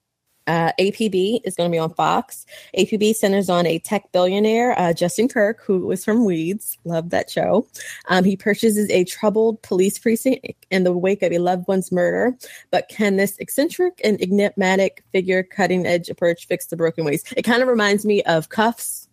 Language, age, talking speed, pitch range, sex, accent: English, 20-39, 185 wpm, 175-215 Hz, female, American